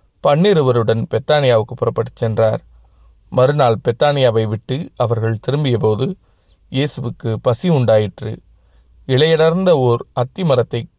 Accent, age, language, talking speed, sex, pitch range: native, 30-49, Tamil, 85 wpm, male, 110-140 Hz